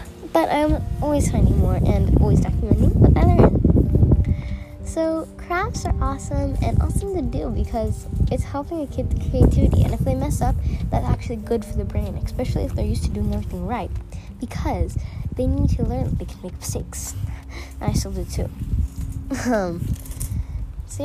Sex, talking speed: female, 175 wpm